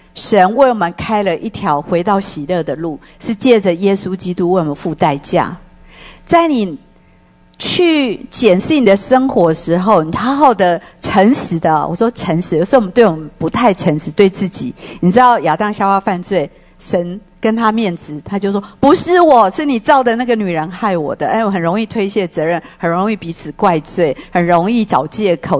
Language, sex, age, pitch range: English, female, 50-69, 170-220 Hz